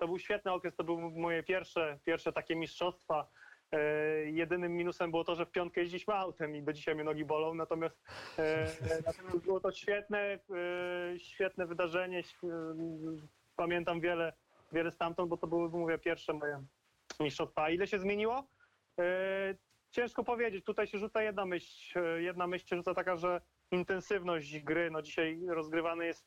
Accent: native